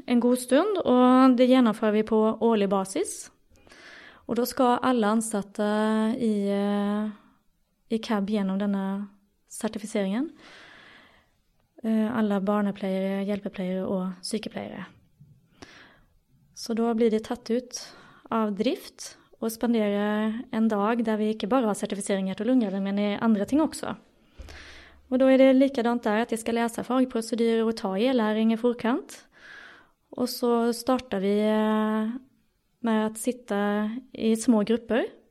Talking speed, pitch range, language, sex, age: 130 wpm, 205-245 Hz, English, female, 20-39